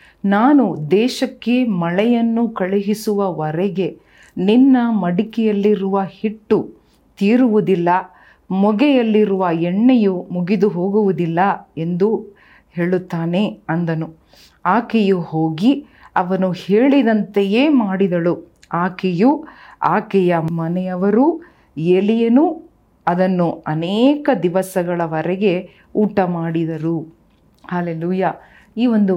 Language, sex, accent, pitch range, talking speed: Kannada, female, native, 170-210 Hz, 70 wpm